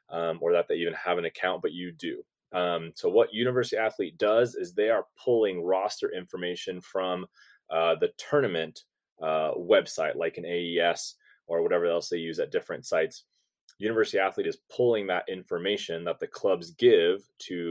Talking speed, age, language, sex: 175 wpm, 30-49, English, male